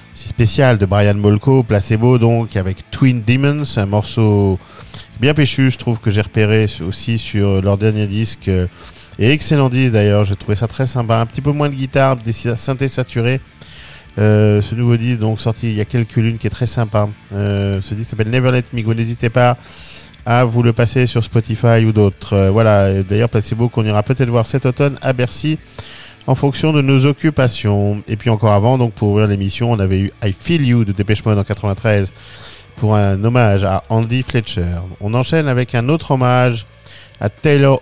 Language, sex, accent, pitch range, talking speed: French, male, French, 105-125 Hz, 195 wpm